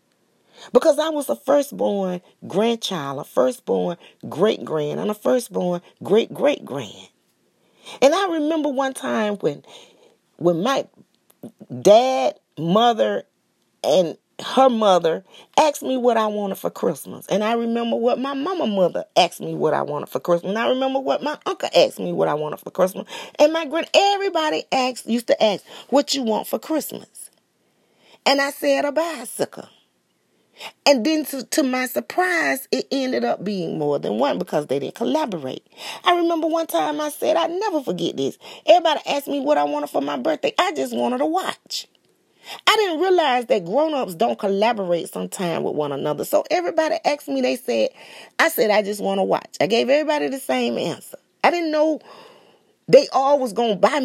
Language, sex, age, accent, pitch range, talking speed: English, female, 40-59, American, 205-315 Hz, 175 wpm